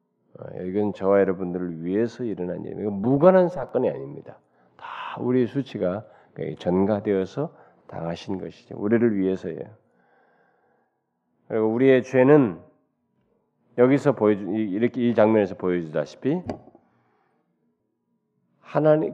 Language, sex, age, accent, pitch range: Korean, male, 40-59, native, 95-135 Hz